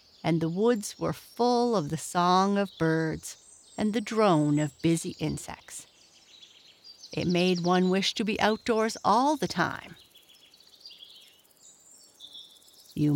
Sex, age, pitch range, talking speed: female, 60-79, 150-190 Hz, 125 wpm